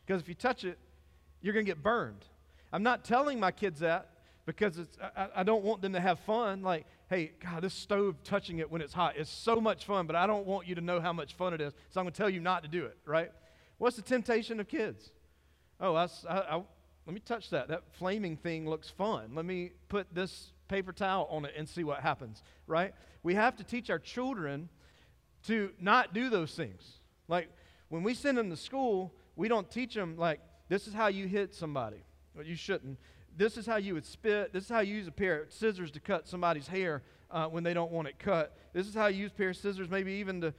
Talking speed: 235 wpm